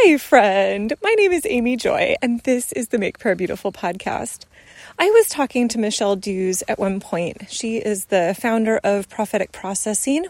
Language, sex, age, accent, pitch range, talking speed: English, female, 30-49, American, 200-260 Hz, 180 wpm